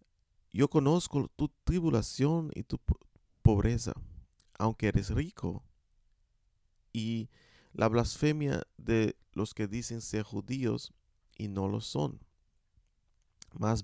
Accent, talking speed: Venezuelan, 105 wpm